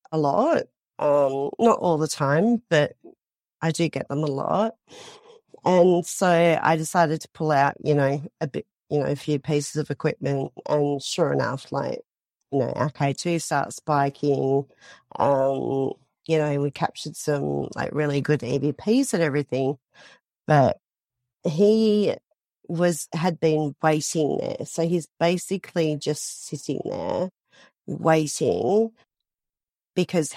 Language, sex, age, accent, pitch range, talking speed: English, female, 40-59, Australian, 140-170 Hz, 135 wpm